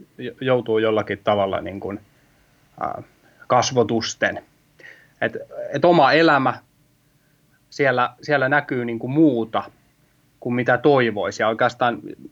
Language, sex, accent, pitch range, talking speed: Finnish, male, native, 115-145 Hz, 75 wpm